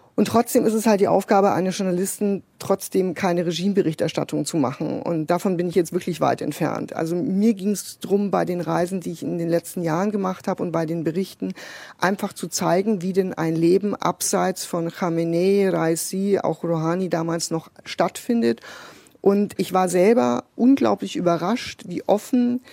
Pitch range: 170-205 Hz